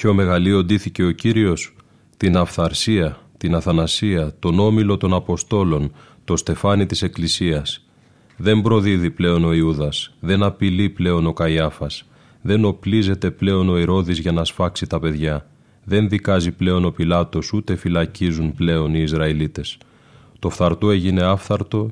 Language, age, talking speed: Greek, 30-49, 140 wpm